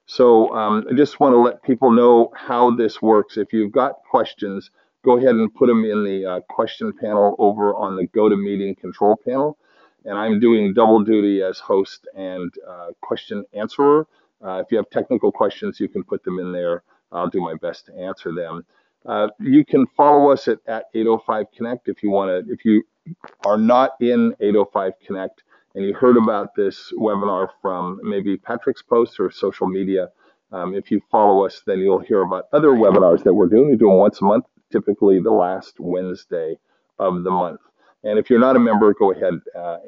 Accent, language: American, English